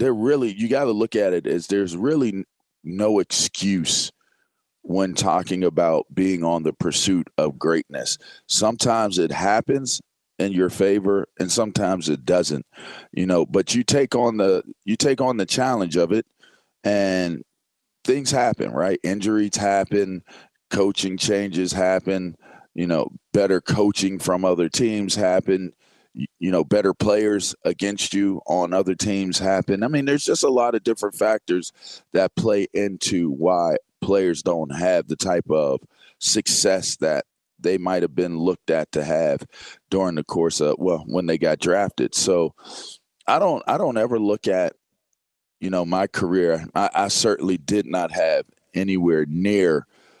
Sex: male